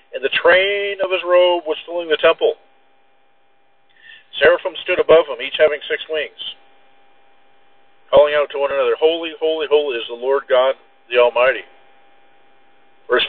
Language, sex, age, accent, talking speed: English, male, 50-69, American, 150 wpm